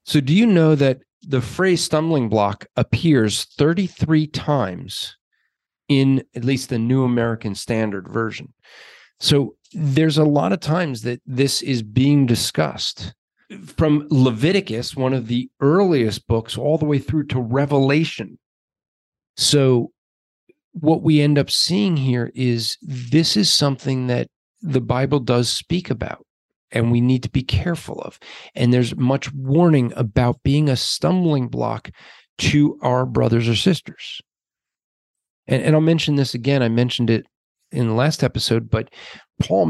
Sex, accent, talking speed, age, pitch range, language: male, American, 145 wpm, 40-59, 120-150 Hz, English